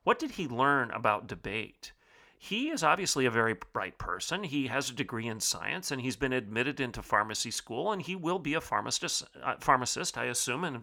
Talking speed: 205 wpm